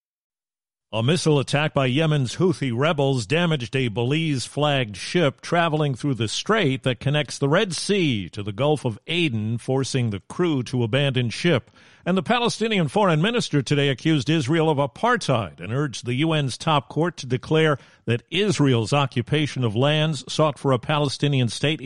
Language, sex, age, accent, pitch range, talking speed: English, male, 50-69, American, 140-230 Hz, 160 wpm